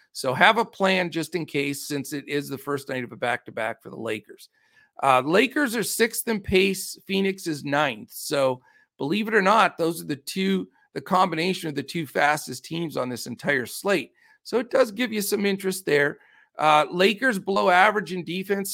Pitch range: 140-195 Hz